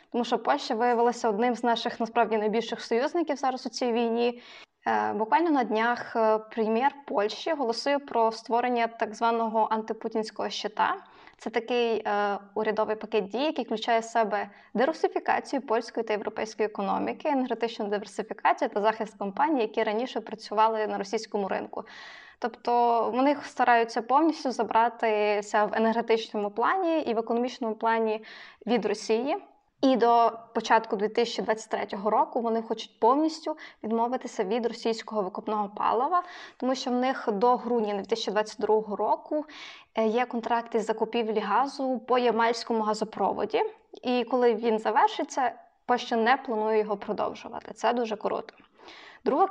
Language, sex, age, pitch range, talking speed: Ukrainian, female, 20-39, 220-250 Hz, 130 wpm